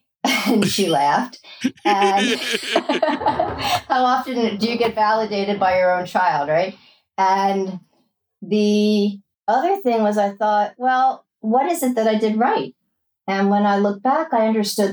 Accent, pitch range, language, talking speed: American, 175-210 Hz, English, 150 wpm